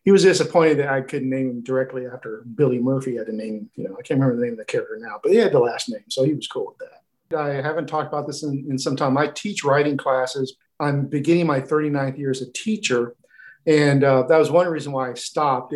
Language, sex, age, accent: English, male, 50-69, American